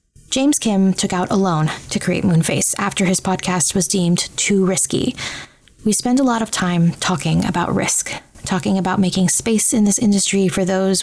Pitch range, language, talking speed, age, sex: 175-205 Hz, English, 185 wpm, 20-39, female